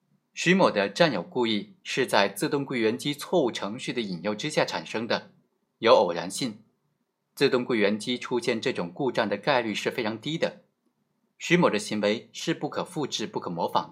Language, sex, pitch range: Chinese, male, 105-165 Hz